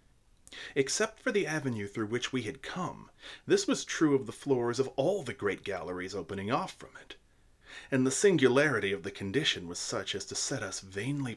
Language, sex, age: English, male, 30-49